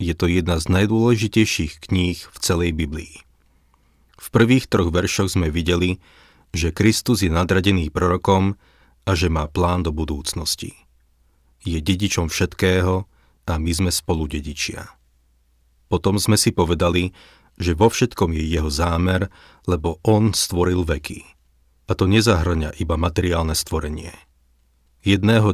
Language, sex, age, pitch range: Slovak, male, 40-59, 75-95 Hz